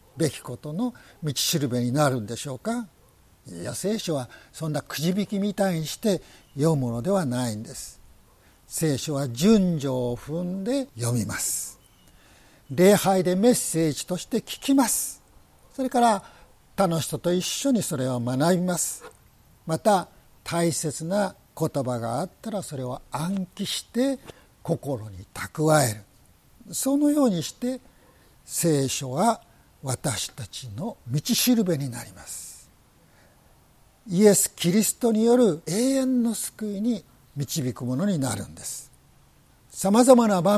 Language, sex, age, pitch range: Japanese, male, 60-79, 130-200 Hz